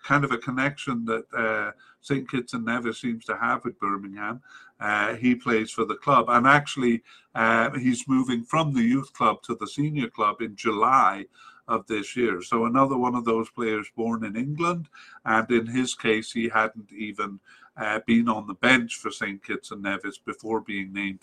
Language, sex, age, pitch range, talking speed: English, male, 50-69, 115-140 Hz, 190 wpm